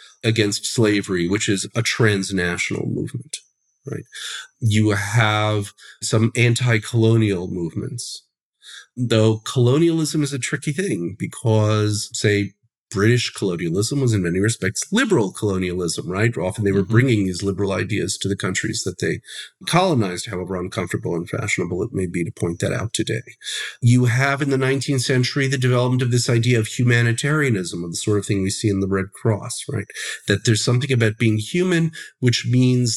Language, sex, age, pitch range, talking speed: English, male, 40-59, 110-140 Hz, 160 wpm